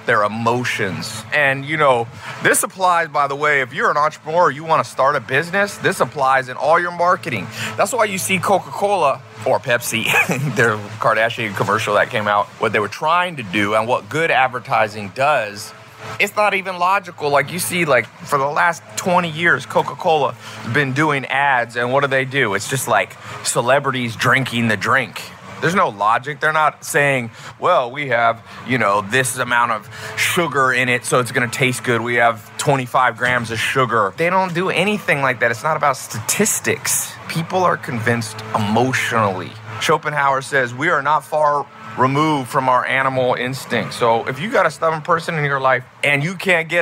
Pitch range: 120-155 Hz